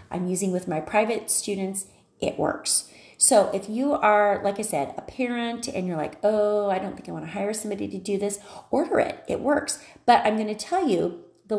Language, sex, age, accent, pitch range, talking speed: English, female, 30-49, American, 170-210 Hz, 210 wpm